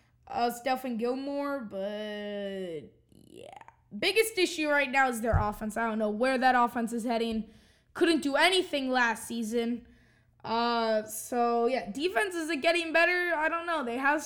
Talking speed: 160 wpm